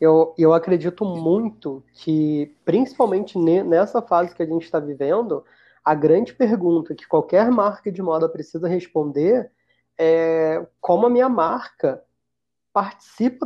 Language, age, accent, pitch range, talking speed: Portuguese, 20-39, Brazilian, 155-195 Hz, 130 wpm